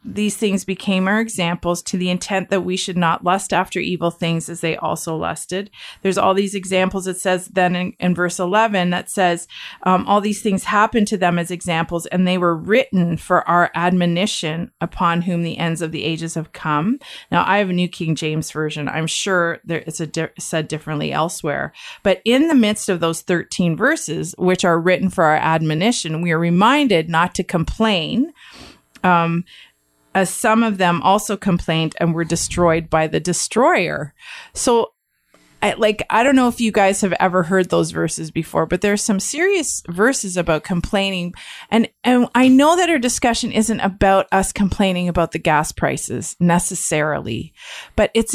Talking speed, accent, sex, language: 180 wpm, American, female, English